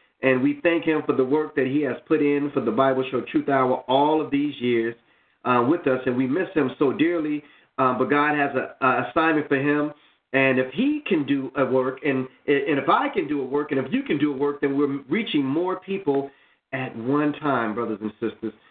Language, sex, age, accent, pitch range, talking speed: English, male, 40-59, American, 130-165 Hz, 235 wpm